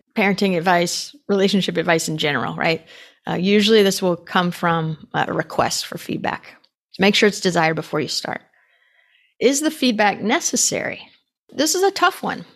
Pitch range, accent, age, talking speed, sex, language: 175-215 Hz, American, 30-49, 160 wpm, female, English